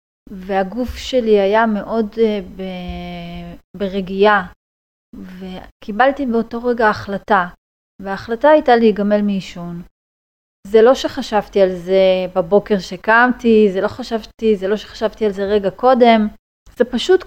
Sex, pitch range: female, 190-245 Hz